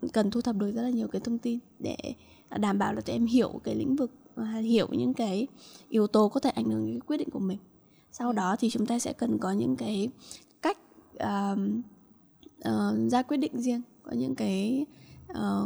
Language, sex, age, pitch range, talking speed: Vietnamese, female, 10-29, 210-260 Hz, 210 wpm